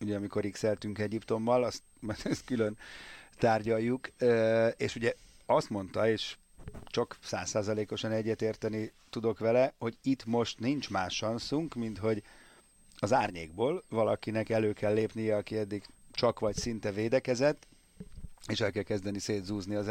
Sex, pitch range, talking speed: male, 105-120 Hz, 140 wpm